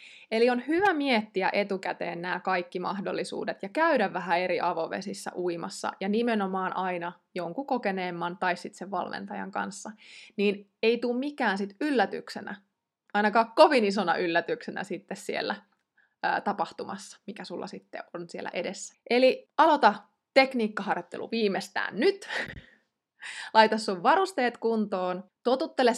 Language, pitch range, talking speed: Finnish, 185-245 Hz, 125 wpm